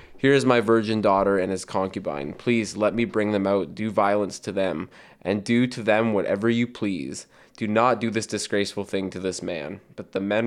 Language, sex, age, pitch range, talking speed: English, male, 20-39, 100-115 Hz, 210 wpm